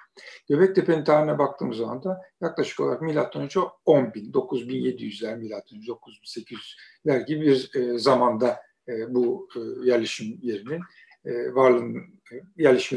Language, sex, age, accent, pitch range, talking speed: Turkish, male, 60-79, native, 135-200 Hz, 95 wpm